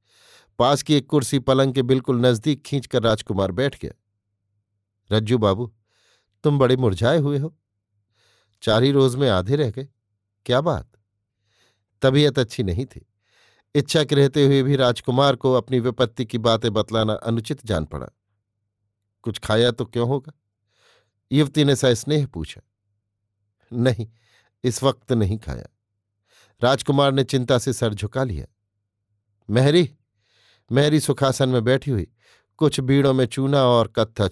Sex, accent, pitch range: male, native, 105-135 Hz